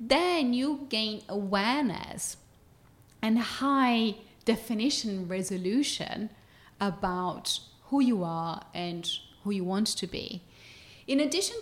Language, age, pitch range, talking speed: English, 30-49, 185-235 Hz, 105 wpm